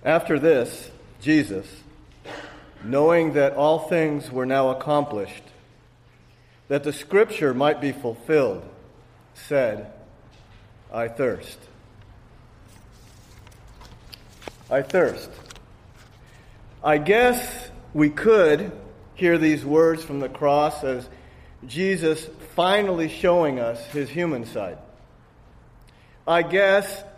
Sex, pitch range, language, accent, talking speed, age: male, 125-190 Hz, English, American, 90 wpm, 50-69